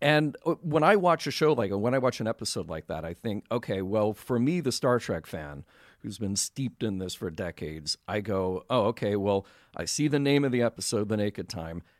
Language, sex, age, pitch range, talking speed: English, male, 40-59, 100-130 Hz, 230 wpm